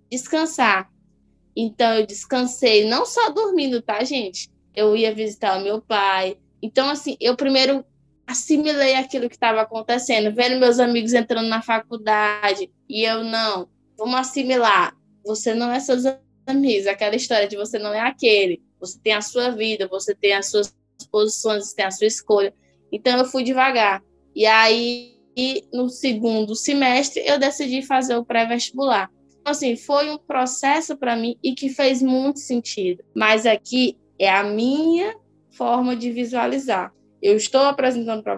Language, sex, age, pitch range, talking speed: Portuguese, female, 10-29, 215-260 Hz, 155 wpm